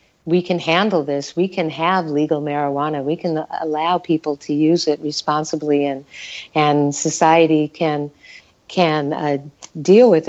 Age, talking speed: 50-69, 145 wpm